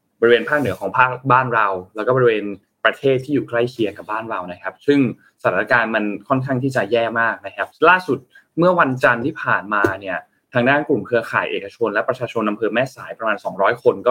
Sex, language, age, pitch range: male, Thai, 20-39, 110-150 Hz